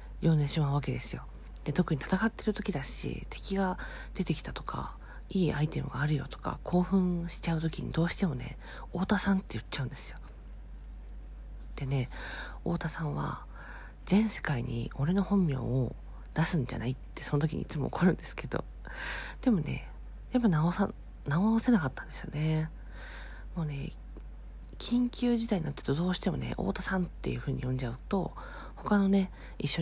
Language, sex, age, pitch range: Japanese, female, 40-59, 130-180 Hz